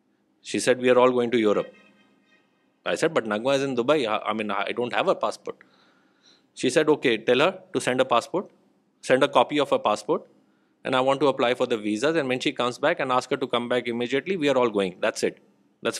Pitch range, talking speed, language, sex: 115-150 Hz, 240 wpm, Urdu, male